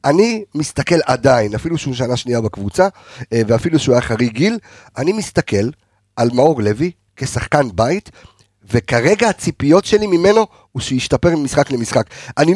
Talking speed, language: 140 wpm, Hebrew